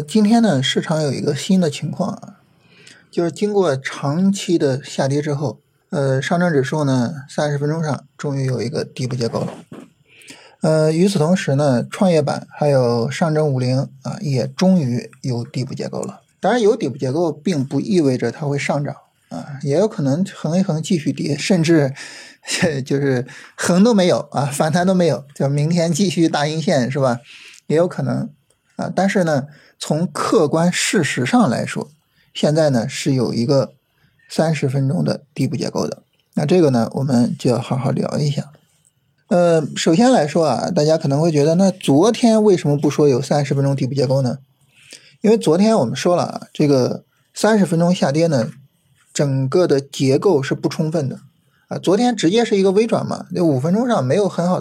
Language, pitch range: Chinese, 140-180 Hz